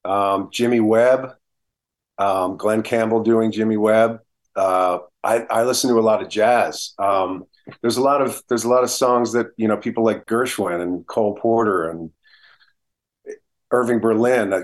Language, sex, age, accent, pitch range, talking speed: English, male, 40-59, American, 100-120 Hz, 170 wpm